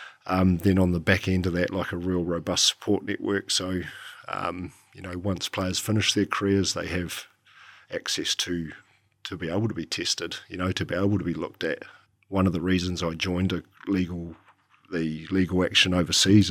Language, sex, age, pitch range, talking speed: English, male, 50-69, 90-95 Hz, 195 wpm